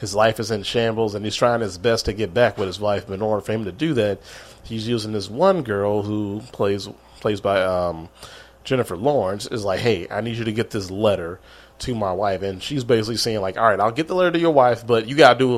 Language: English